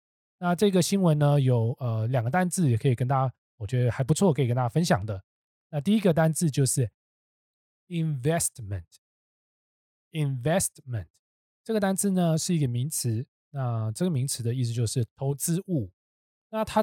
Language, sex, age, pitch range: Chinese, male, 20-39, 115-155 Hz